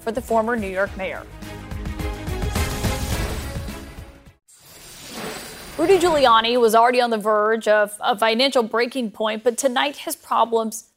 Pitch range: 215-250 Hz